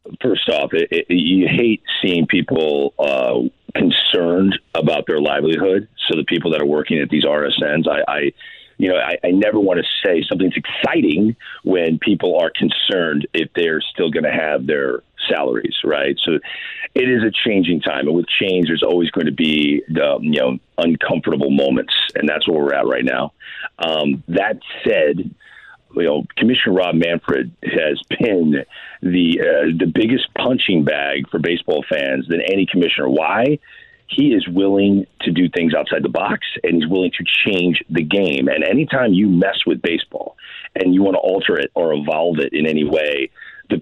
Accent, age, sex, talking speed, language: American, 40-59, male, 175 wpm, English